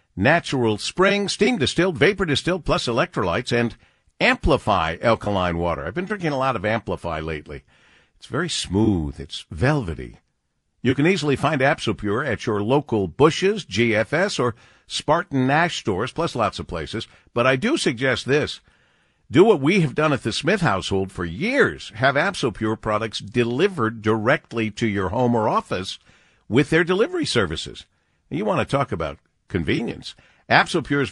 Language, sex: English, male